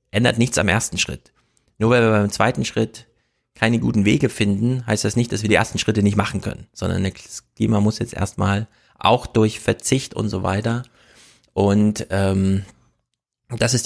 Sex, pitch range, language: male, 100-115 Hz, German